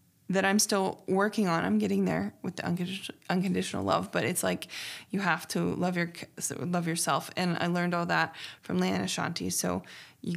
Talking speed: 185 wpm